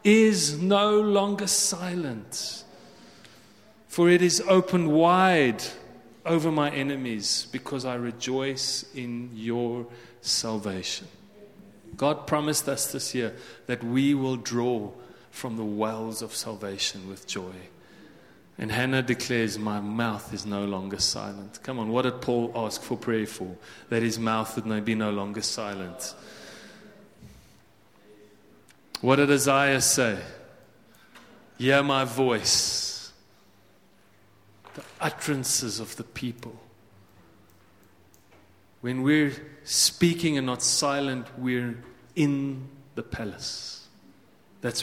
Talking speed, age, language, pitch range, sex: 110 wpm, 30-49, English, 110-135 Hz, male